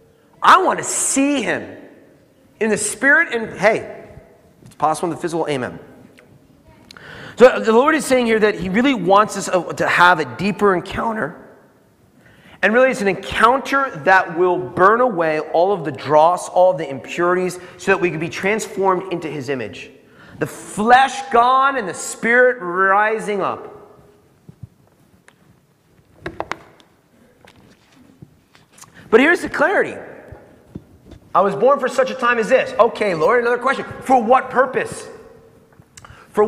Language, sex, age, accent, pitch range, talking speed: English, male, 40-59, American, 180-250 Hz, 145 wpm